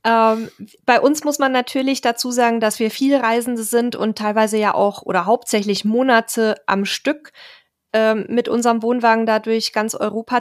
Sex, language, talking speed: female, German, 165 wpm